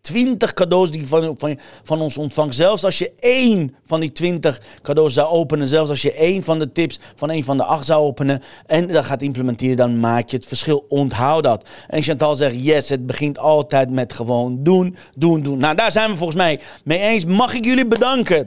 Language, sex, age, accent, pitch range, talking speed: Dutch, male, 40-59, Dutch, 140-185 Hz, 220 wpm